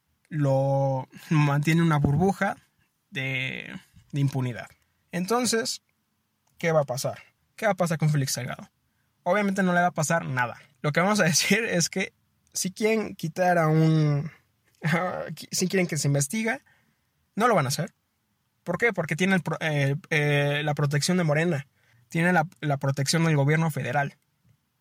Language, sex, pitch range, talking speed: Spanish, male, 140-180 Hz, 165 wpm